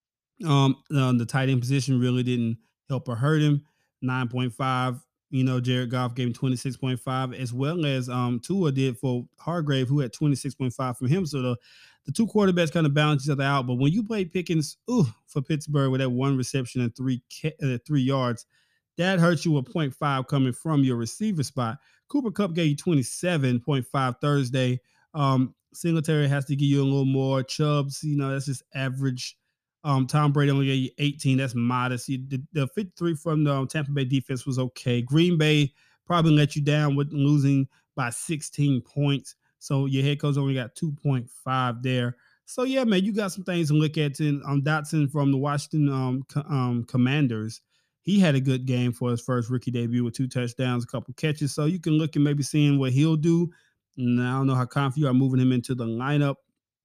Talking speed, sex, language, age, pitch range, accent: 195 wpm, male, English, 20-39, 130-150 Hz, American